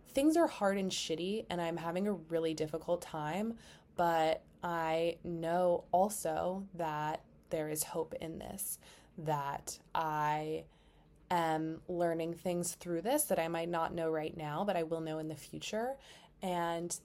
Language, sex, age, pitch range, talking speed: English, female, 20-39, 160-180 Hz, 155 wpm